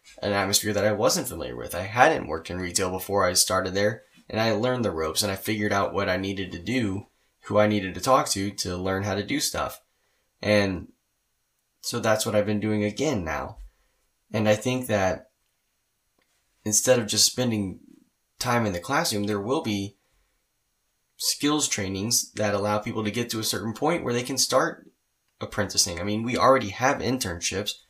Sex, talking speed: male, 190 wpm